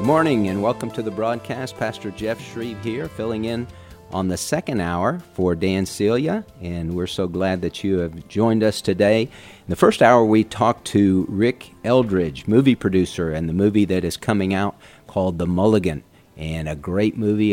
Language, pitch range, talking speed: English, 90-110 Hz, 190 wpm